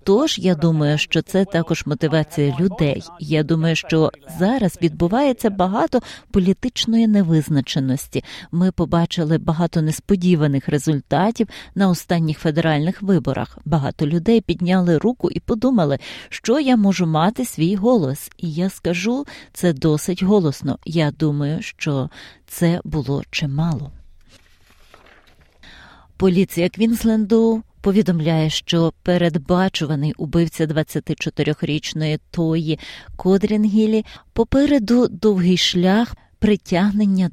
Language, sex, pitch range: Ukrainian, female, 155-195 Hz